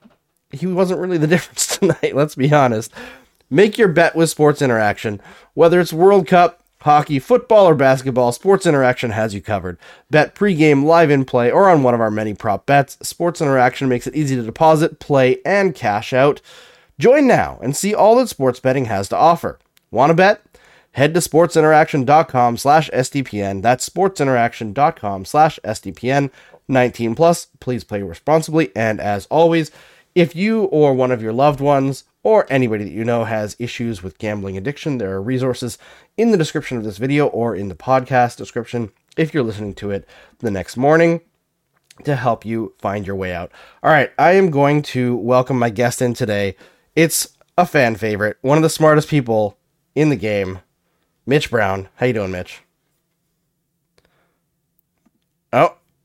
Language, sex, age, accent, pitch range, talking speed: English, male, 30-49, American, 115-160 Hz, 170 wpm